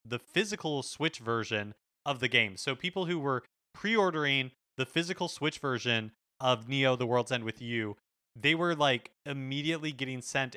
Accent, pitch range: American, 115-150 Hz